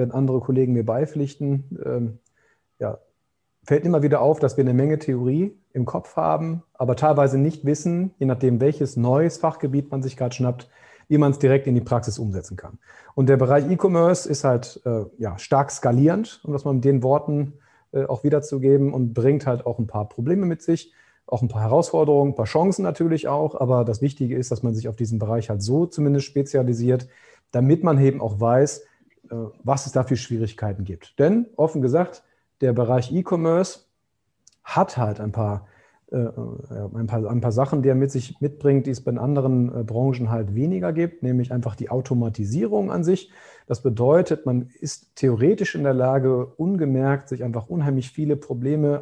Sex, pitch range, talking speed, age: male, 120-150 Hz, 180 wpm, 40-59